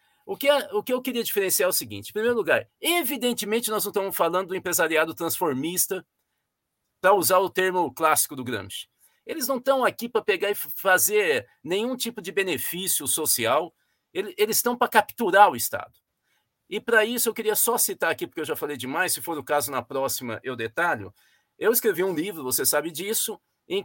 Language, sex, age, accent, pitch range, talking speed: Portuguese, male, 50-69, Brazilian, 165-270 Hz, 185 wpm